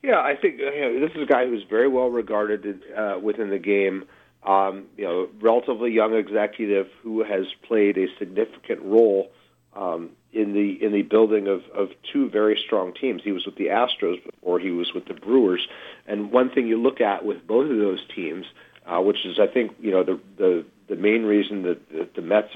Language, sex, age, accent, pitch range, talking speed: English, male, 50-69, American, 100-120 Hz, 215 wpm